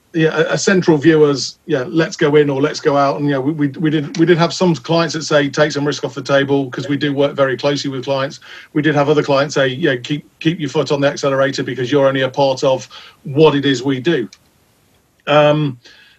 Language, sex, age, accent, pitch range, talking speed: English, male, 40-59, British, 130-155 Hz, 250 wpm